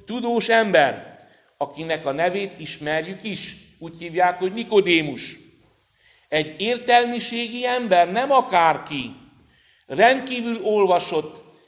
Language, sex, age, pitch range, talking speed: Hungarian, male, 60-79, 150-205 Hz, 90 wpm